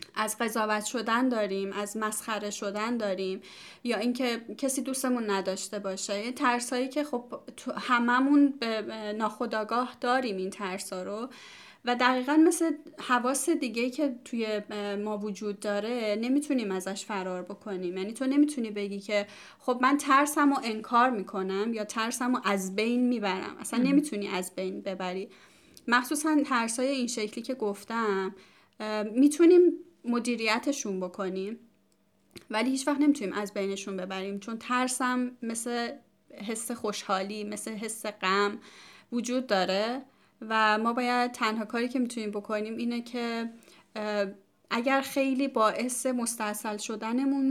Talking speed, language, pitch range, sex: 125 wpm, Persian, 205-255 Hz, female